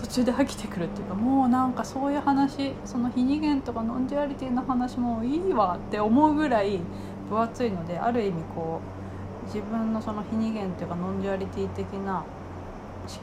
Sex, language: female, Japanese